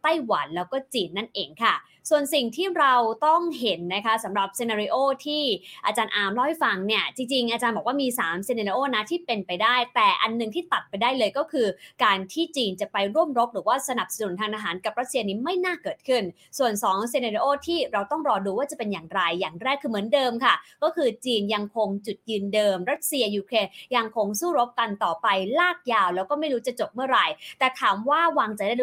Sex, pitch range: female, 200-260 Hz